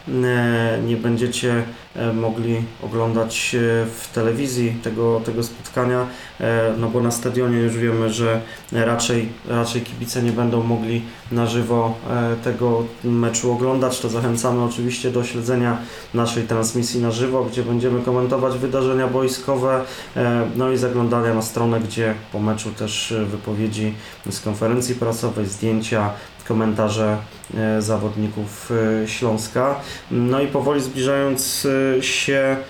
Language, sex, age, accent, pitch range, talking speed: Polish, male, 20-39, native, 115-130 Hz, 115 wpm